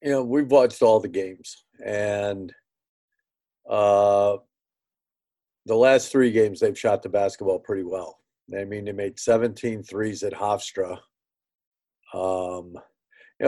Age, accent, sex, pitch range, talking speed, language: 50-69, American, male, 100-135 Hz, 130 wpm, English